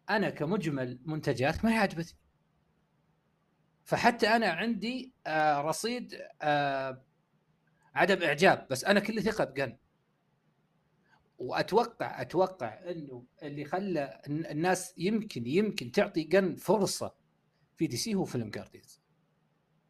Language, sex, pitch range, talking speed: Arabic, male, 145-185 Hz, 110 wpm